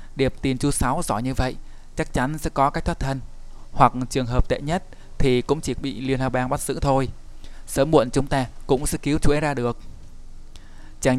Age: 20-39